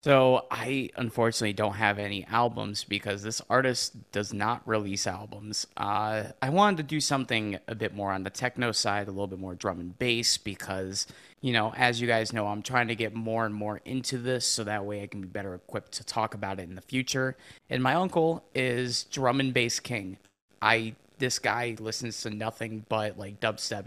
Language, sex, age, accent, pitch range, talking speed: English, male, 20-39, American, 100-120 Hz, 205 wpm